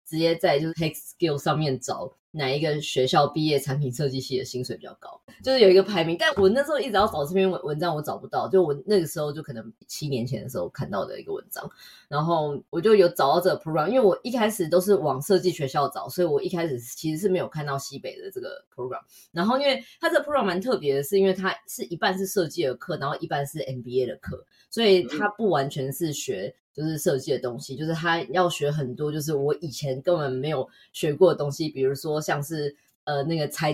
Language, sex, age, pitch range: Chinese, female, 20-39, 140-190 Hz